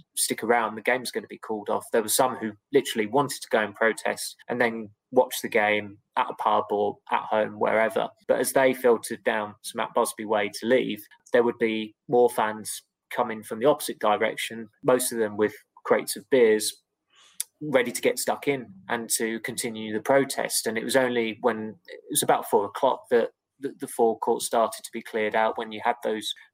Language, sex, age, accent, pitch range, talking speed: English, male, 20-39, British, 105-125 Hz, 205 wpm